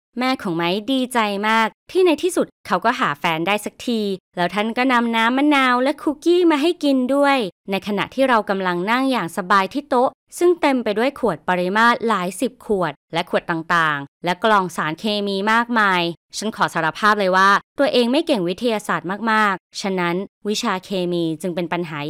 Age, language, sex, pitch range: 20-39, Thai, female, 175-245 Hz